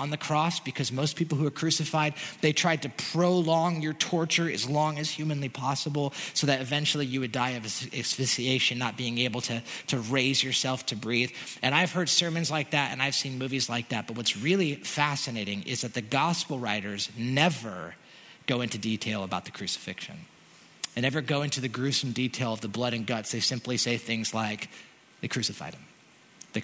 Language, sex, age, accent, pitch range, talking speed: English, male, 30-49, American, 125-165 Hz, 195 wpm